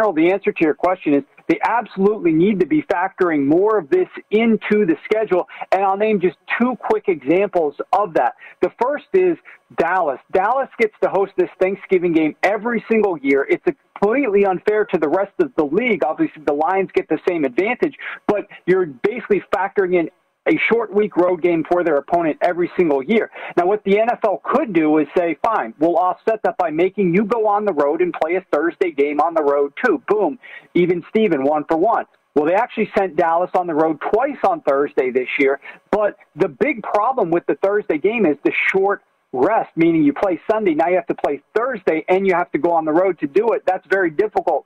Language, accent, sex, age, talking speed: English, American, male, 40-59, 210 wpm